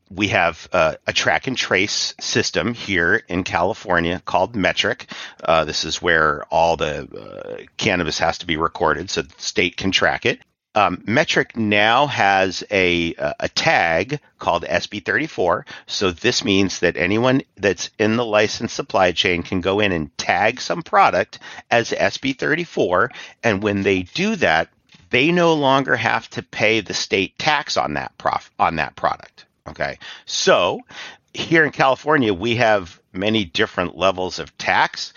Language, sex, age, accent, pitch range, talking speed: Hebrew, male, 50-69, American, 95-135 Hz, 160 wpm